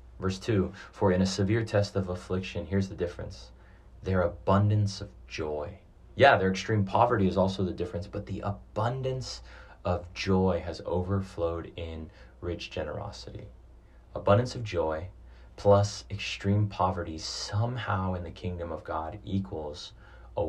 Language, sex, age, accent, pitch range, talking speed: English, male, 30-49, American, 90-100 Hz, 140 wpm